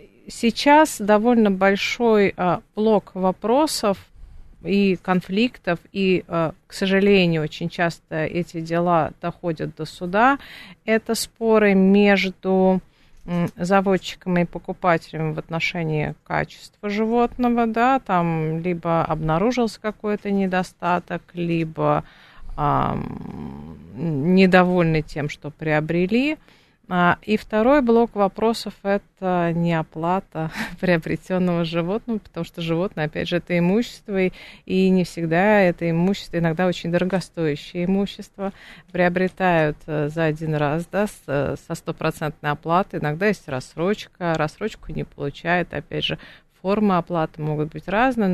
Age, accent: 40-59, native